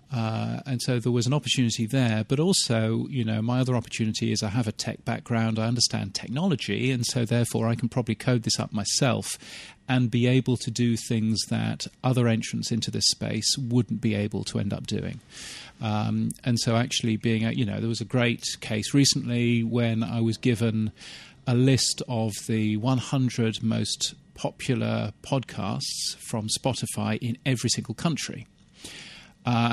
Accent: British